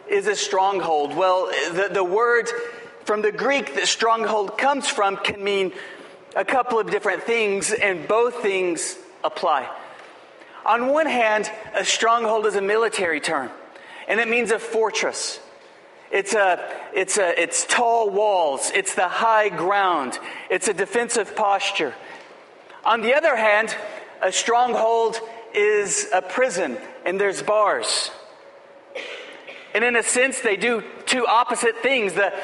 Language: English